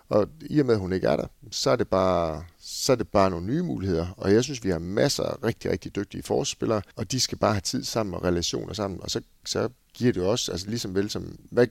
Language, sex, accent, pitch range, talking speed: Danish, male, native, 90-120 Hz, 265 wpm